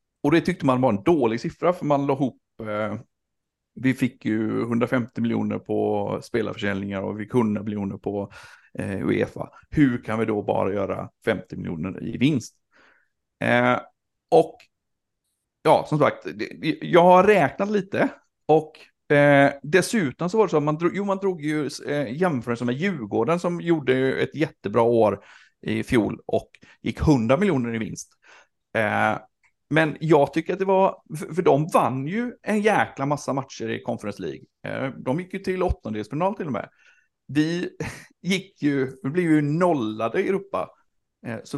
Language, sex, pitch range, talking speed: Swedish, male, 115-165 Hz, 160 wpm